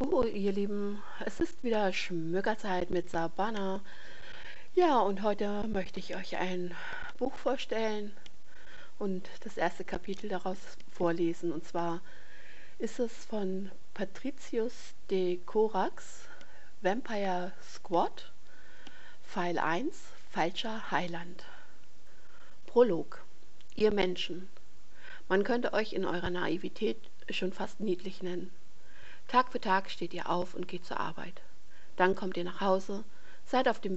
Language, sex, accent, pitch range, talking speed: German, female, German, 175-210 Hz, 125 wpm